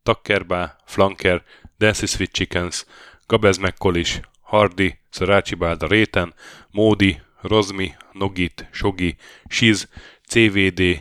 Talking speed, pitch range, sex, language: 85 wpm, 90-105 Hz, male, Hungarian